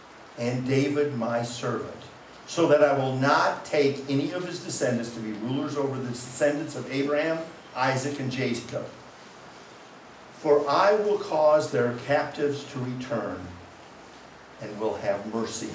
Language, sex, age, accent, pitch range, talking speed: English, male, 60-79, American, 130-160 Hz, 140 wpm